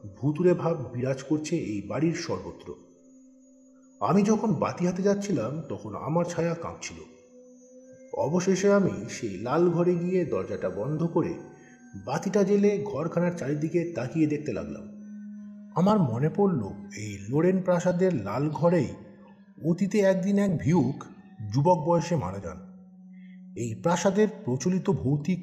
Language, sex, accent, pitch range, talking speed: Bengali, male, native, 125-190 Hz, 80 wpm